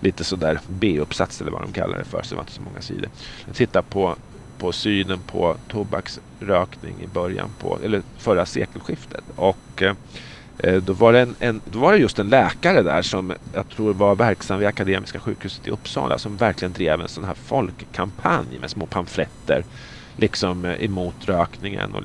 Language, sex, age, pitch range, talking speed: English, male, 30-49, 95-120 Hz, 185 wpm